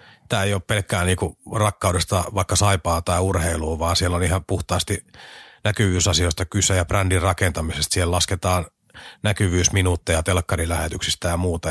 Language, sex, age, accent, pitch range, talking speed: Finnish, male, 30-49, native, 90-115 Hz, 135 wpm